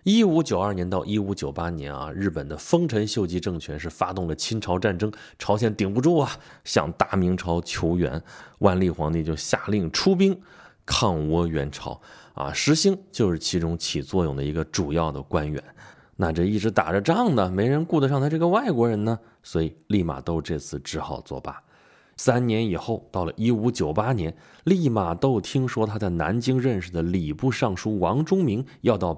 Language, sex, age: Chinese, male, 20-39